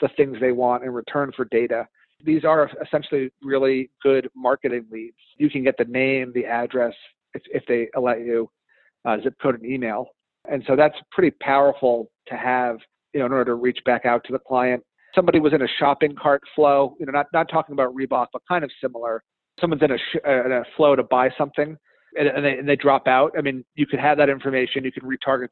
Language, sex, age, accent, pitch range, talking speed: English, male, 40-59, American, 125-145 Hz, 225 wpm